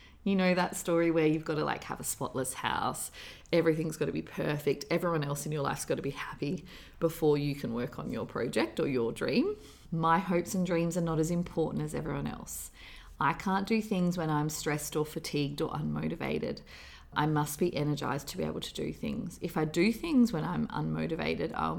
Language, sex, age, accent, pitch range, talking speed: English, female, 30-49, Australian, 145-195 Hz, 210 wpm